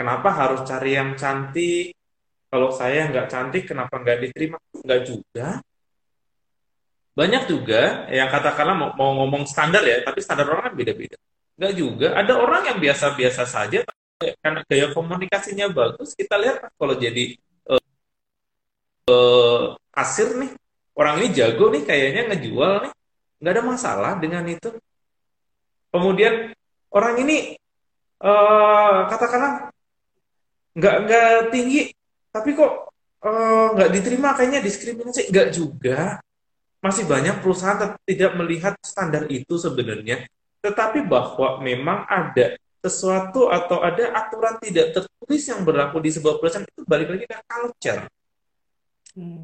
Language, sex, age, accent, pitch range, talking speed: Indonesian, male, 30-49, native, 155-235 Hz, 125 wpm